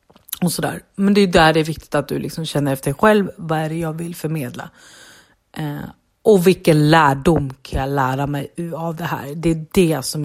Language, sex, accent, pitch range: Swedish, female, native, 150-190 Hz